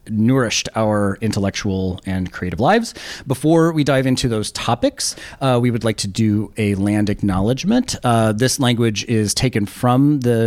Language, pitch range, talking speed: English, 100-125 Hz, 160 wpm